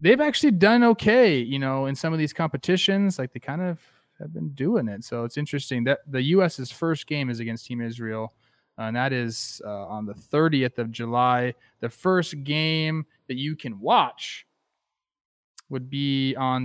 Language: English